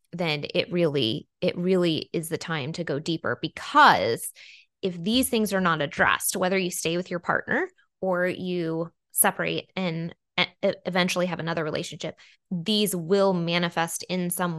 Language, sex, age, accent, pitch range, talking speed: English, female, 20-39, American, 170-190 Hz, 150 wpm